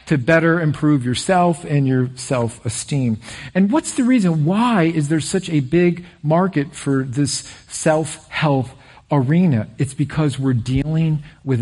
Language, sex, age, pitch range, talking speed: English, male, 50-69, 125-165 Hz, 140 wpm